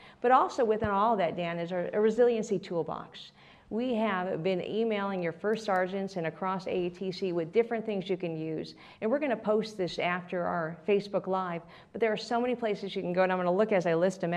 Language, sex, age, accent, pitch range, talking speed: English, female, 50-69, American, 175-220 Hz, 230 wpm